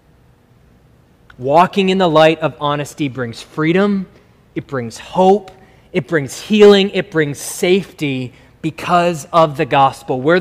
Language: English